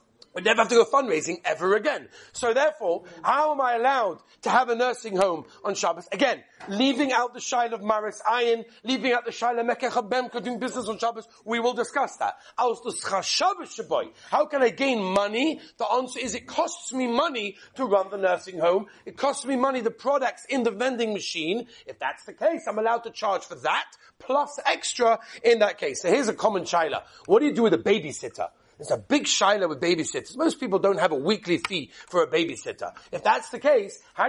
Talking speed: 205 wpm